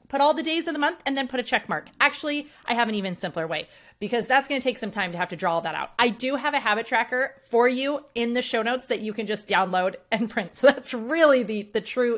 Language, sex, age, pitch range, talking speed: English, female, 30-49, 185-260 Hz, 290 wpm